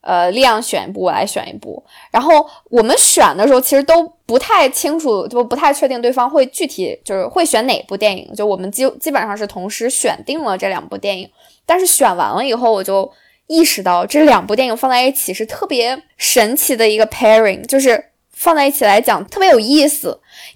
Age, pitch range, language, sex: 10-29, 200-280 Hz, Chinese, female